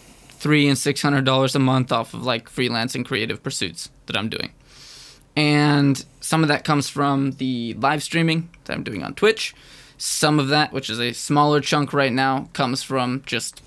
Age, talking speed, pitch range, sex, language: 20-39, 180 wpm, 130-150 Hz, male, English